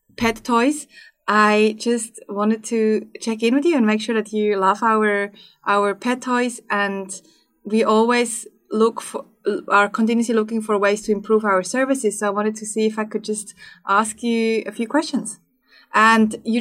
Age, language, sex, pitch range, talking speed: 20-39, English, female, 205-235 Hz, 180 wpm